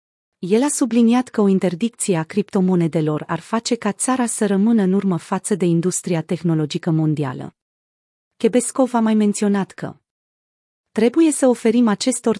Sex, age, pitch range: female, 30-49, 175-225 Hz